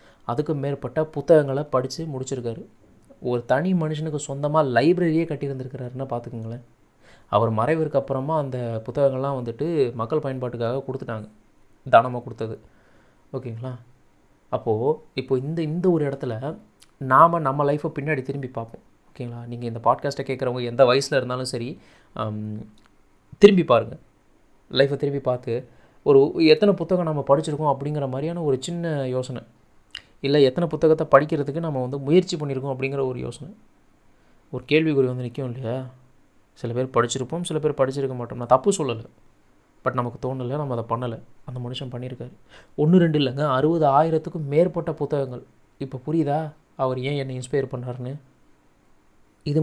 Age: 20-39